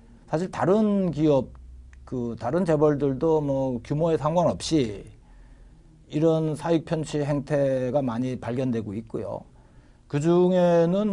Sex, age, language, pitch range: male, 40-59, Korean, 130-160 Hz